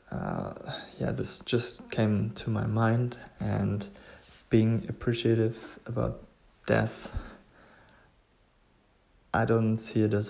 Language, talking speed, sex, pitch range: English, 105 wpm, male, 105-115 Hz